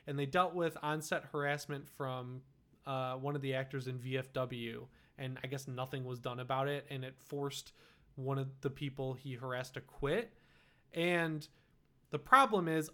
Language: English